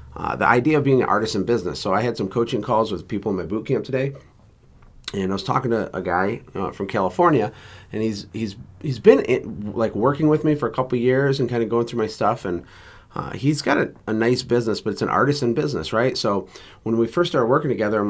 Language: English